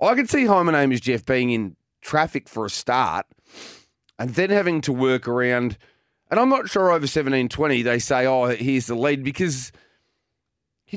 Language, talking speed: English, 190 wpm